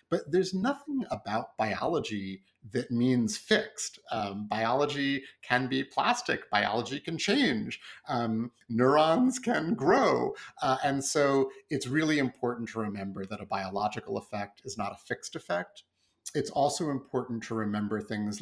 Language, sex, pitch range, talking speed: English, male, 110-140 Hz, 140 wpm